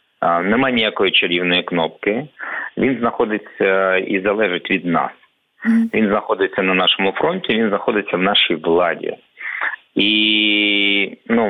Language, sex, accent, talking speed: Ukrainian, male, native, 115 wpm